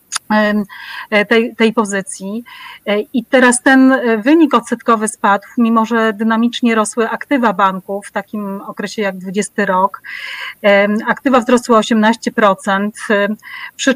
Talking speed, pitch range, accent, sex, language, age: 110 wpm, 205-235 Hz, native, female, Polish, 30-49